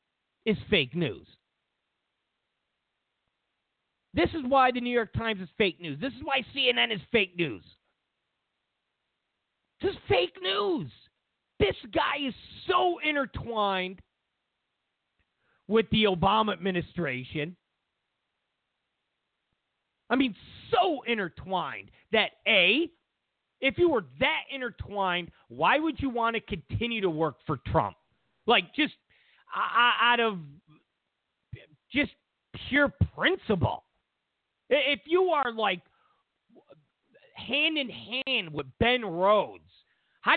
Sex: male